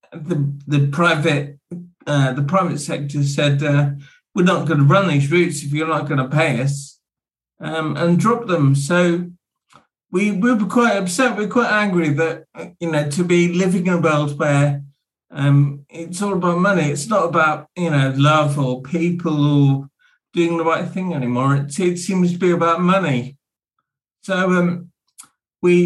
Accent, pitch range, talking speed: British, 145-180 Hz, 175 wpm